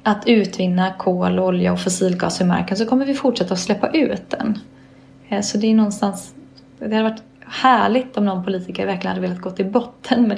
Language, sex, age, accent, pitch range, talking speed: English, female, 20-39, Swedish, 185-235 Hz, 195 wpm